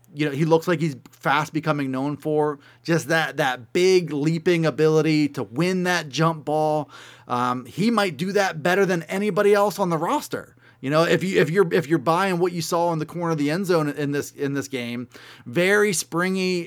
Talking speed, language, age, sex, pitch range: 220 wpm, English, 30-49, male, 150-185 Hz